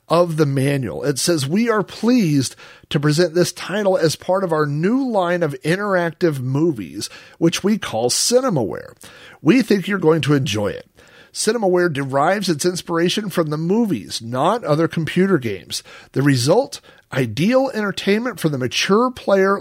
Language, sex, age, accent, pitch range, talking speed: English, male, 50-69, American, 140-190 Hz, 155 wpm